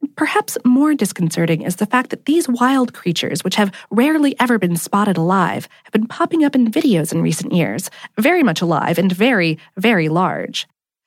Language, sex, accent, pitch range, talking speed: English, female, American, 180-275 Hz, 180 wpm